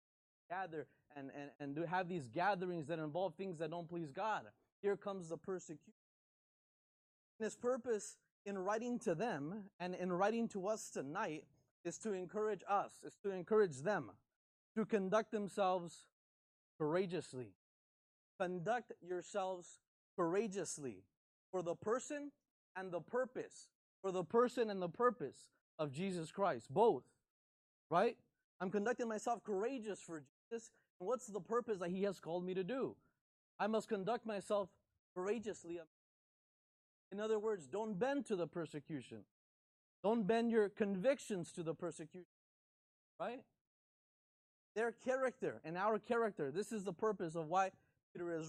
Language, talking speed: English, 140 wpm